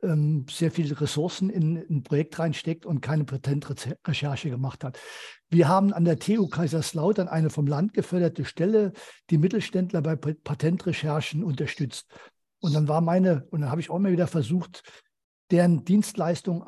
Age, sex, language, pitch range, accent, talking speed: 50-69, male, German, 150-185 Hz, German, 150 wpm